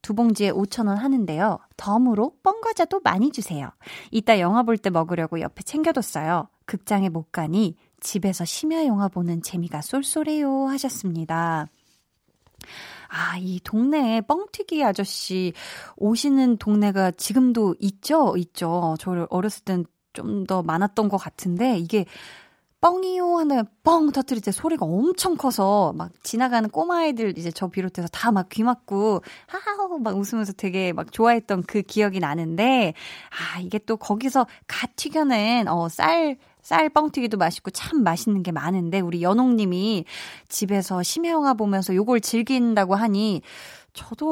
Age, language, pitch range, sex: 20-39, Korean, 185-260 Hz, female